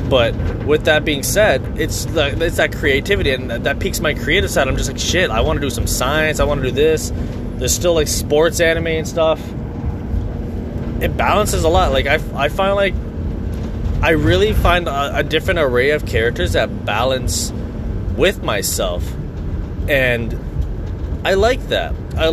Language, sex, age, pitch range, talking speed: English, male, 20-39, 105-155 Hz, 170 wpm